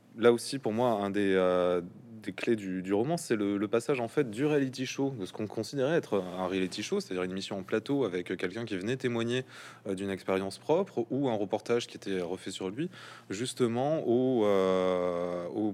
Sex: male